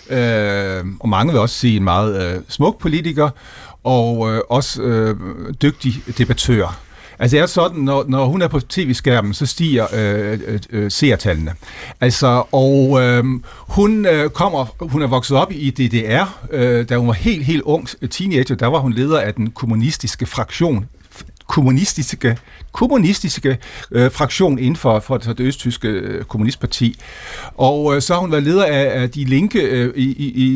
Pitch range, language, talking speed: 120-155 Hz, Danish, 160 wpm